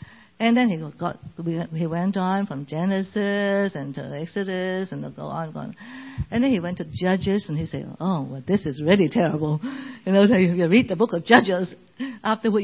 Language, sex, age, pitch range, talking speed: English, female, 60-79, 160-230 Hz, 215 wpm